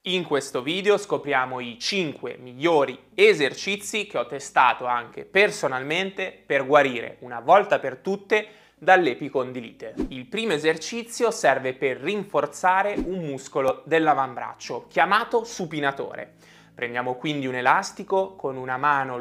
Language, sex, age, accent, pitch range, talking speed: Italian, male, 20-39, native, 130-205 Hz, 120 wpm